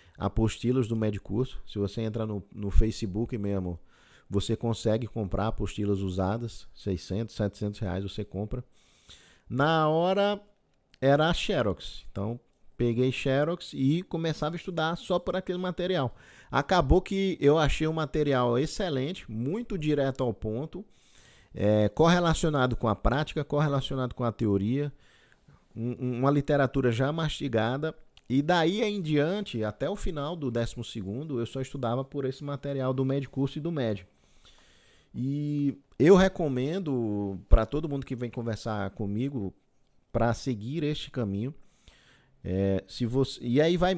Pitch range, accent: 105-150 Hz, Brazilian